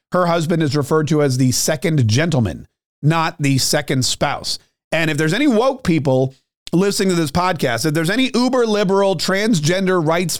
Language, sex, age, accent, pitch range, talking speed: English, male, 40-59, American, 145-185 Hz, 175 wpm